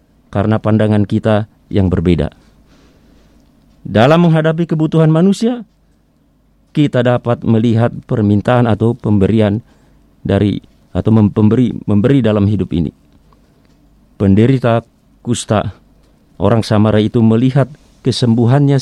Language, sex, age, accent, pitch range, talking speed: Indonesian, male, 40-59, native, 105-140 Hz, 90 wpm